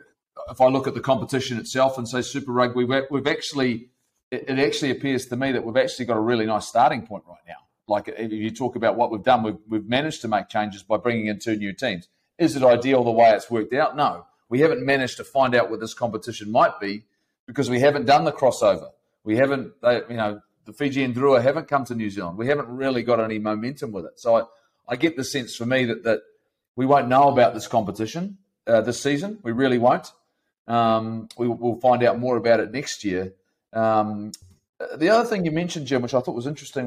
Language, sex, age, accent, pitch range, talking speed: English, male, 30-49, Australian, 110-135 Hz, 230 wpm